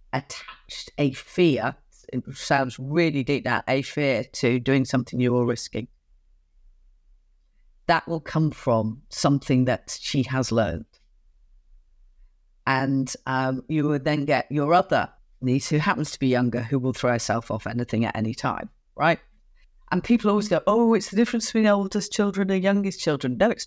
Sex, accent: female, British